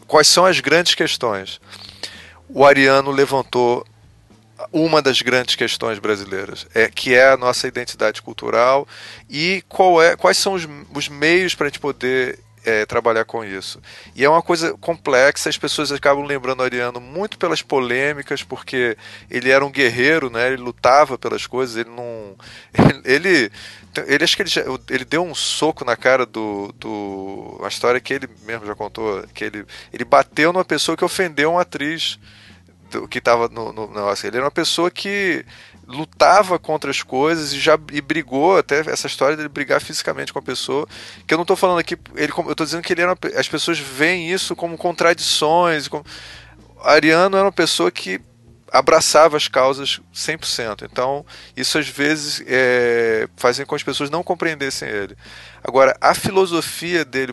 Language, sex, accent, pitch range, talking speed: Portuguese, male, Brazilian, 120-160 Hz, 175 wpm